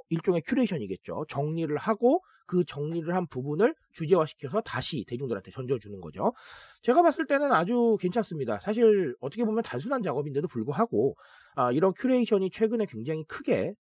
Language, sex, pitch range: Korean, male, 155-230 Hz